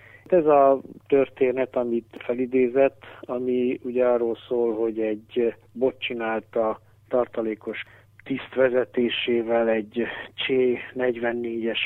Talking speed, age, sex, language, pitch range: 85 wpm, 60-79, male, Hungarian, 105-120 Hz